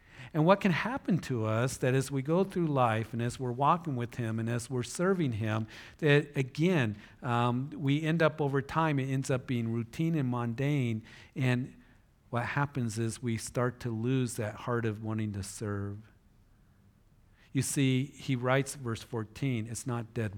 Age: 50-69